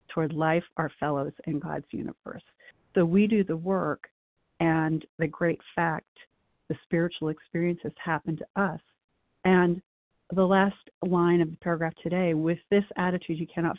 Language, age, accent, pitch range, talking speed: English, 40-59, American, 155-180 Hz, 155 wpm